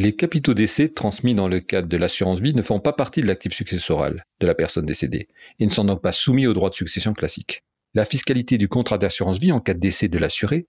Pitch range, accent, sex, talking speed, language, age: 100-130 Hz, French, male, 235 wpm, French, 40-59